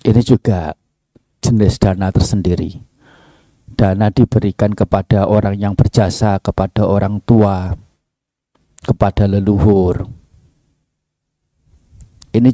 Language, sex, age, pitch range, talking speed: Indonesian, male, 50-69, 100-120 Hz, 80 wpm